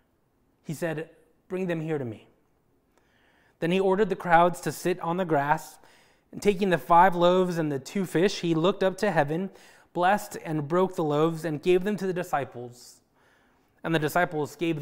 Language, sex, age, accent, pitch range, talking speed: English, male, 20-39, American, 155-195 Hz, 185 wpm